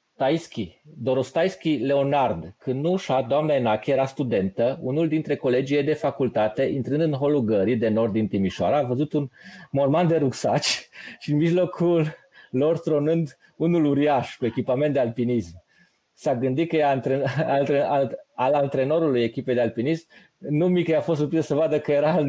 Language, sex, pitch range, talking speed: Romanian, male, 120-160 Hz, 160 wpm